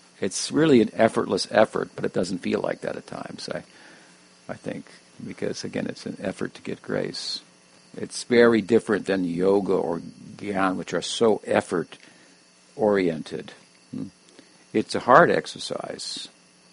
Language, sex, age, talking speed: English, male, 50-69, 140 wpm